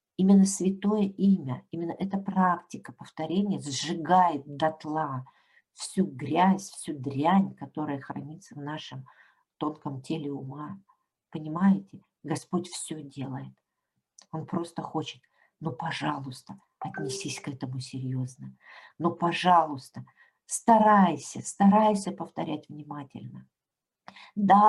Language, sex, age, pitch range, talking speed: Russian, female, 50-69, 140-180 Hz, 95 wpm